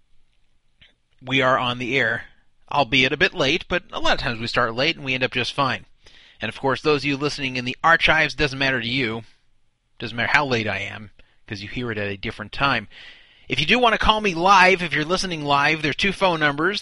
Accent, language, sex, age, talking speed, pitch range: American, English, male, 30-49, 245 wpm, 130-180 Hz